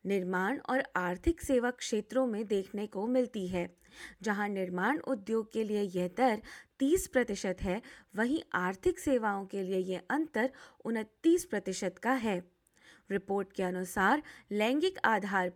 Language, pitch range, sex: Hindi, 195-280 Hz, female